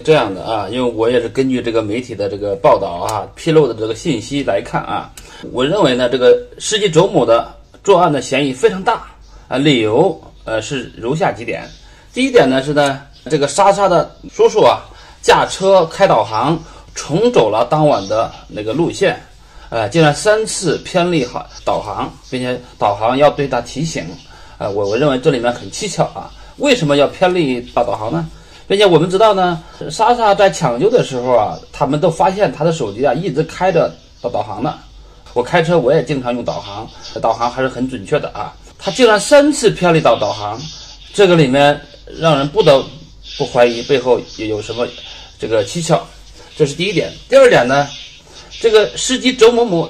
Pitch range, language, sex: 130-195 Hz, Chinese, male